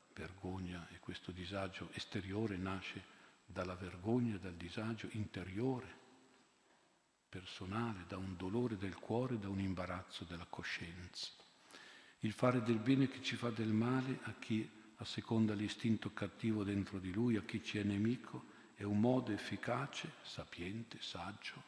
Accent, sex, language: native, male, Italian